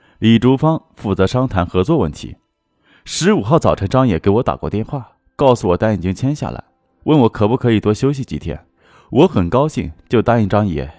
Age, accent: 20-39, native